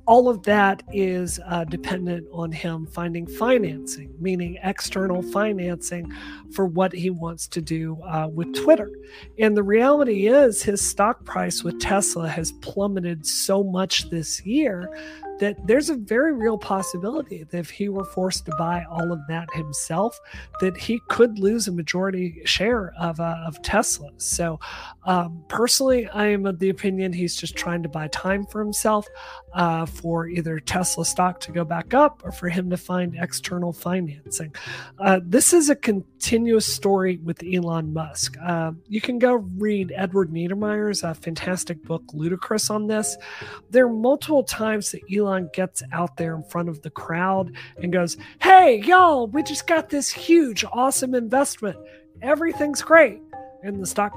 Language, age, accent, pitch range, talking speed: English, 40-59, American, 170-220 Hz, 165 wpm